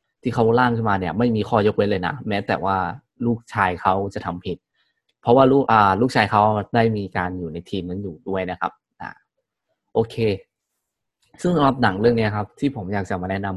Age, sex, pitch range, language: 20-39, male, 95-120 Hz, Thai